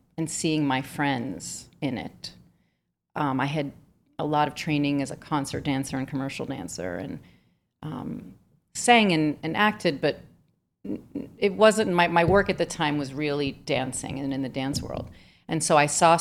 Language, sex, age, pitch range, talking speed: English, female, 40-59, 135-165 Hz, 175 wpm